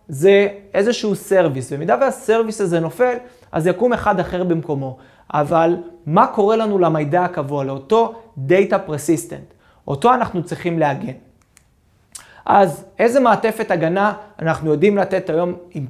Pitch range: 150-205 Hz